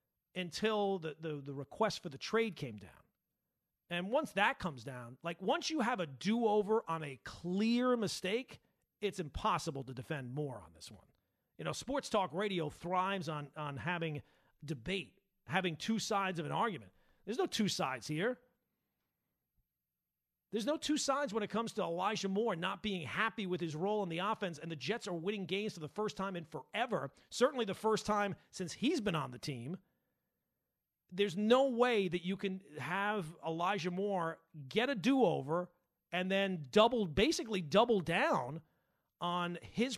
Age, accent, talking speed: 40-59, American, 175 wpm